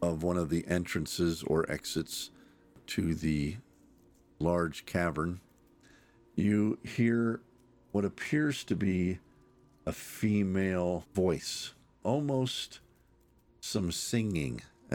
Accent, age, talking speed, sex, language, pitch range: American, 50-69, 90 wpm, male, English, 80-100 Hz